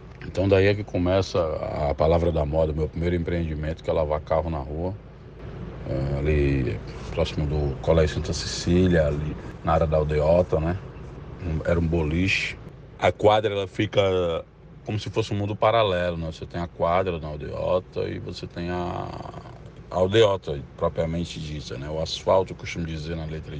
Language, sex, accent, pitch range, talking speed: Portuguese, male, Brazilian, 75-90 Hz, 170 wpm